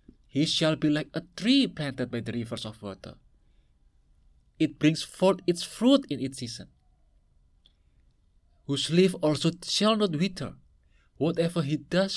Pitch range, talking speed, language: 110-170 Hz, 145 wpm, English